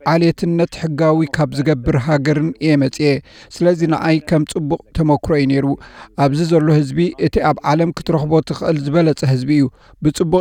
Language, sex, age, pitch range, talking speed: Amharic, male, 60-79, 150-165 Hz, 135 wpm